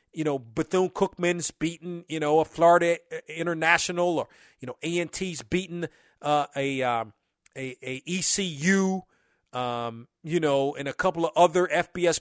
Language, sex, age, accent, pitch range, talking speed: English, male, 40-59, American, 155-185 Hz, 155 wpm